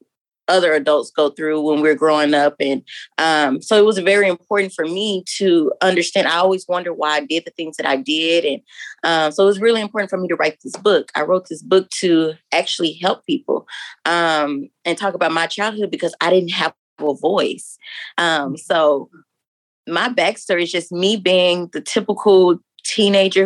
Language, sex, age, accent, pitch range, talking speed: English, female, 20-39, American, 155-190 Hz, 190 wpm